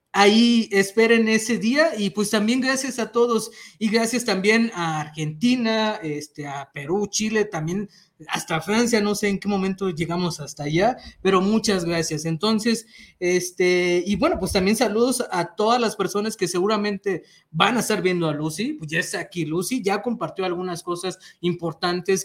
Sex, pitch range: male, 170-220 Hz